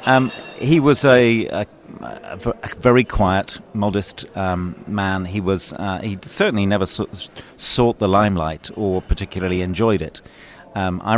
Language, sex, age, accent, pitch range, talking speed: English, male, 40-59, British, 90-105 Hz, 135 wpm